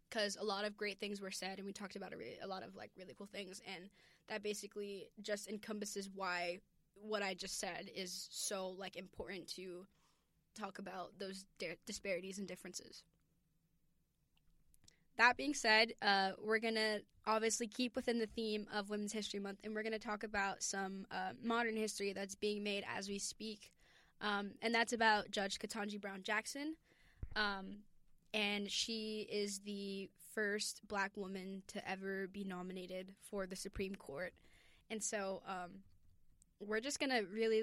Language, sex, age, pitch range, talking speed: English, female, 10-29, 195-220 Hz, 165 wpm